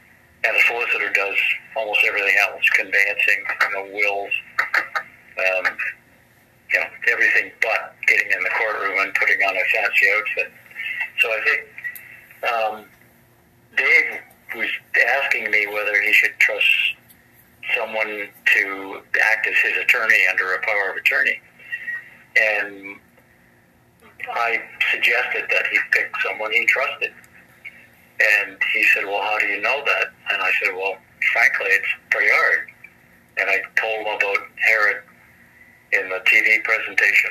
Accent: American